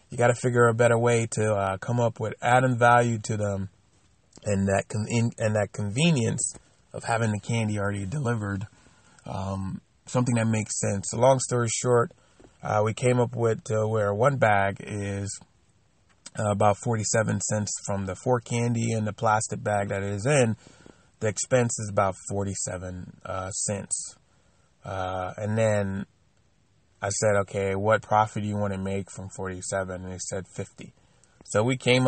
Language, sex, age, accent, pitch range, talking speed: English, male, 30-49, American, 100-115 Hz, 170 wpm